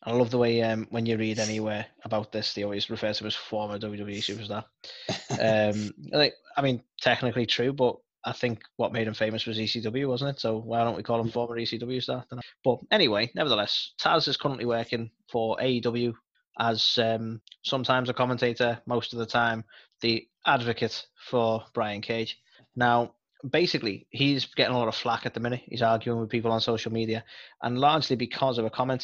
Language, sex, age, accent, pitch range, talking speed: English, male, 20-39, British, 110-120 Hz, 190 wpm